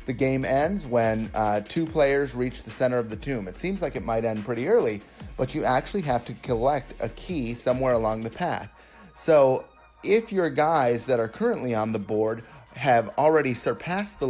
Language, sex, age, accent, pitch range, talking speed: English, male, 30-49, American, 115-145 Hz, 195 wpm